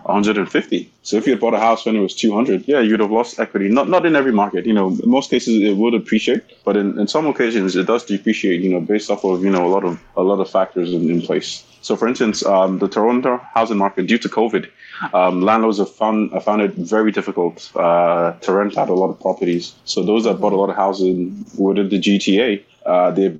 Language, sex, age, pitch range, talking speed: English, male, 20-39, 95-110 Hz, 250 wpm